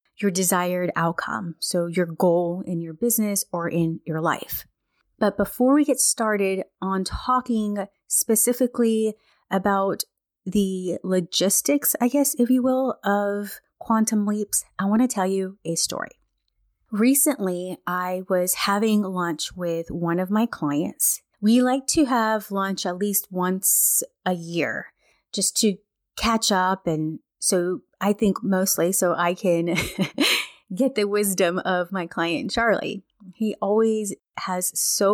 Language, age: English, 30-49